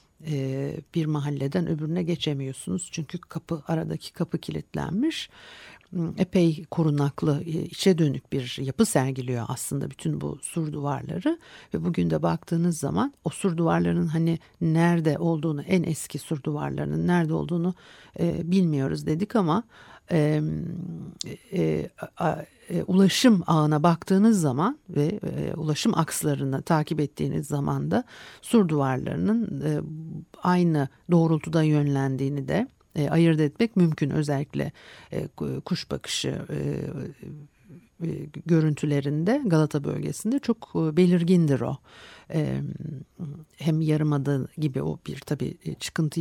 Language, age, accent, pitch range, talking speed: Turkish, 60-79, native, 145-175 Hz, 100 wpm